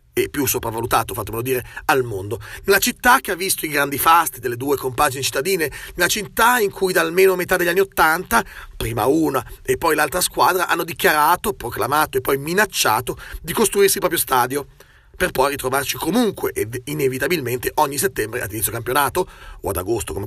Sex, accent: male, native